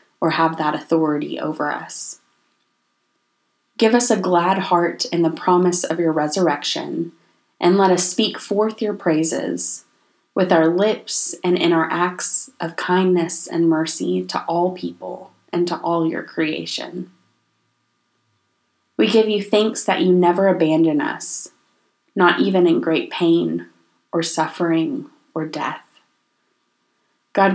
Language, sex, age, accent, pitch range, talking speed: English, female, 20-39, American, 150-185 Hz, 135 wpm